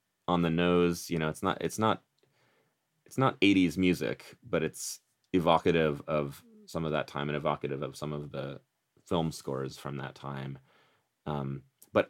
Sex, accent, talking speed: male, American, 170 wpm